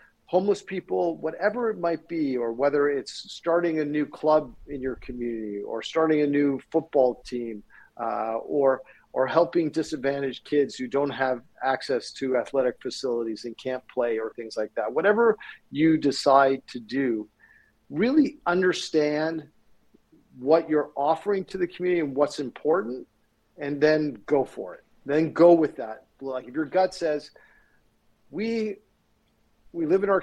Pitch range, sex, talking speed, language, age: 135-170 Hz, male, 155 wpm, English, 50-69